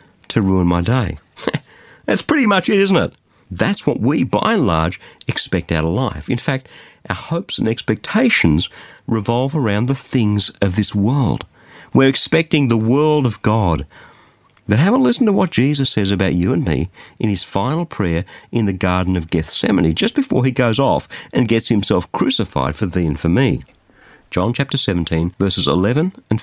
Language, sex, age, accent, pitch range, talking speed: English, male, 50-69, Australian, 90-130 Hz, 180 wpm